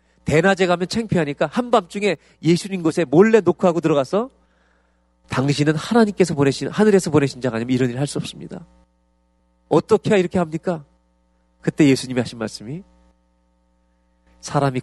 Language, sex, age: Korean, male, 40-59